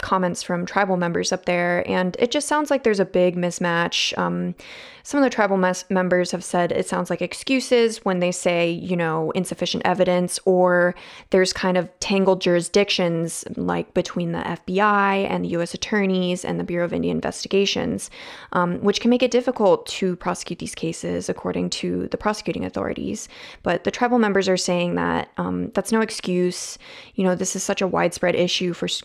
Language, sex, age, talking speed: English, female, 20-39, 185 wpm